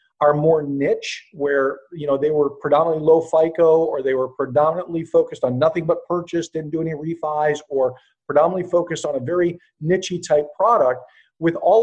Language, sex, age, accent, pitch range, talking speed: English, male, 40-59, American, 150-195 Hz, 180 wpm